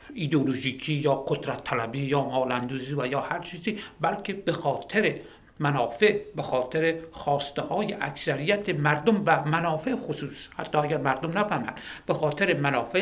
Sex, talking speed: male, 140 wpm